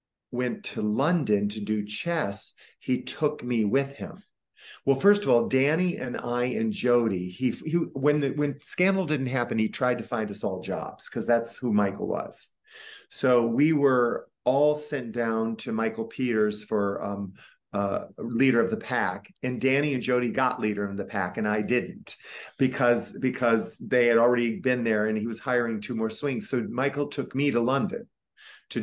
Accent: American